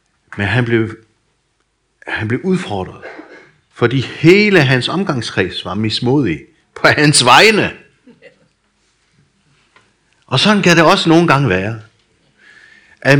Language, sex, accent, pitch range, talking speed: Danish, male, native, 120-165 Hz, 110 wpm